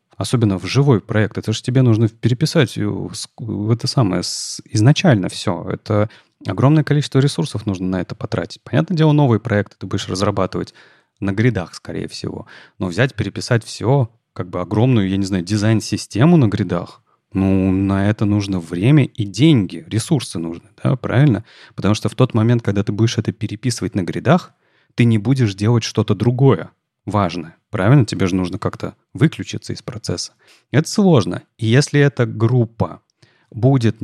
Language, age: Russian, 30-49